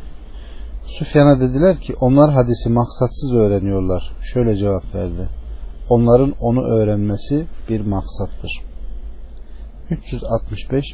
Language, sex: Turkish, male